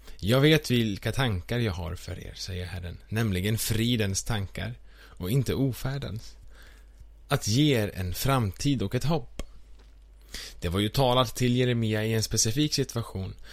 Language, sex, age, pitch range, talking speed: Swedish, male, 20-39, 85-125 Hz, 150 wpm